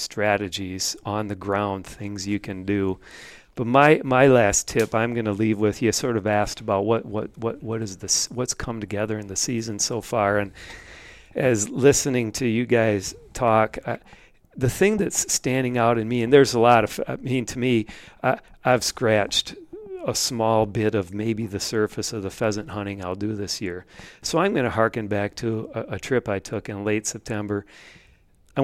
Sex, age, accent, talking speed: male, 40-59, American, 195 wpm